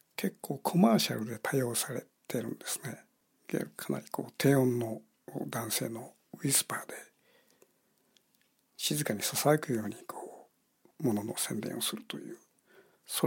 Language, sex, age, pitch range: Japanese, male, 60-79, 125-170 Hz